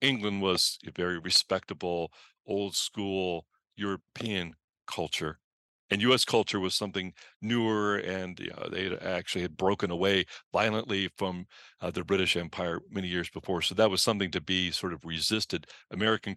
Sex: male